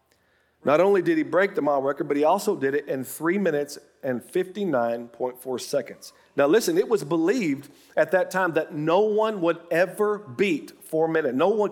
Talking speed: 190 wpm